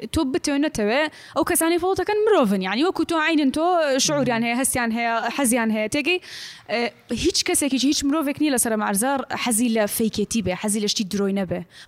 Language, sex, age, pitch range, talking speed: Arabic, female, 10-29, 210-275 Hz, 195 wpm